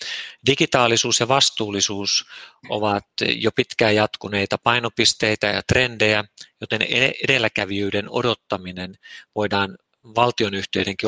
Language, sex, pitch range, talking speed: Finnish, male, 105-125 Hz, 80 wpm